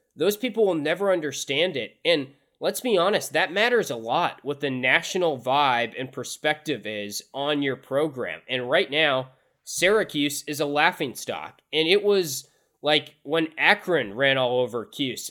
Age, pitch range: 20-39, 130-170 Hz